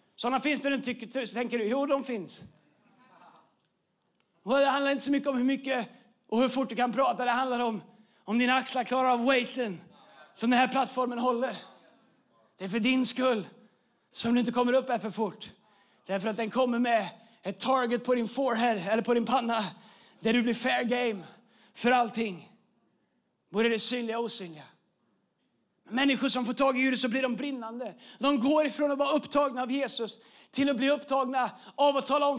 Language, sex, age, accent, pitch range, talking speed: Swedish, male, 30-49, native, 235-305 Hz, 195 wpm